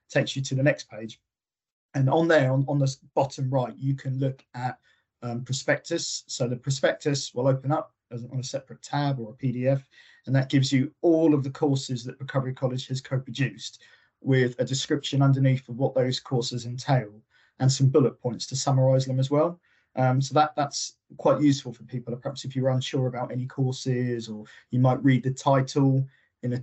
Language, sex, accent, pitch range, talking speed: English, male, British, 125-140 Hz, 195 wpm